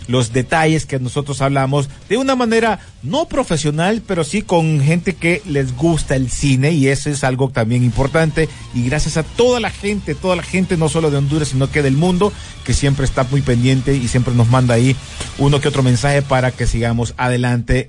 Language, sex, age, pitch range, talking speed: Spanish, male, 50-69, 125-165 Hz, 200 wpm